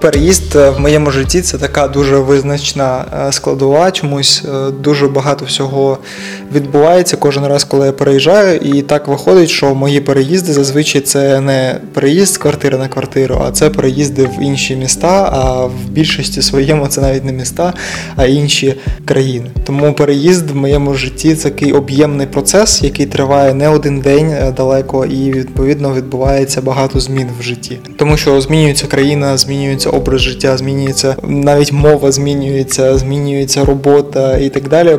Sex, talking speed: male, 160 wpm